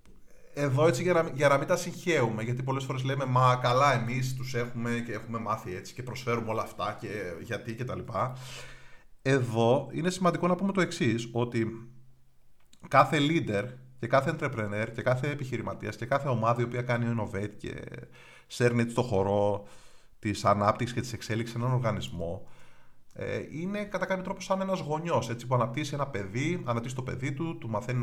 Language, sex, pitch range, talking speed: Greek, male, 115-140 Hz, 180 wpm